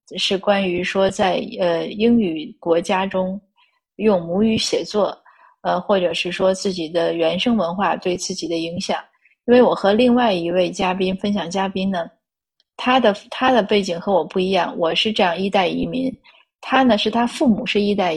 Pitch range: 185-225 Hz